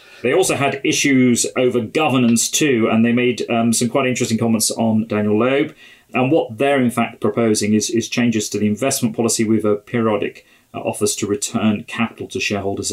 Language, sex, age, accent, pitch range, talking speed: English, male, 40-59, British, 105-120 Hz, 190 wpm